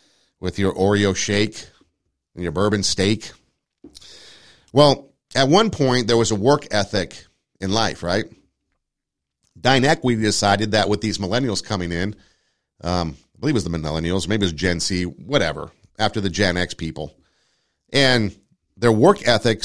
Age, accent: 50-69, American